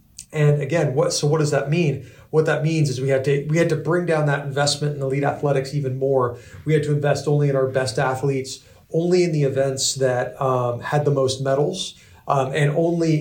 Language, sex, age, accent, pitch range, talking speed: English, male, 40-59, American, 130-155 Hz, 225 wpm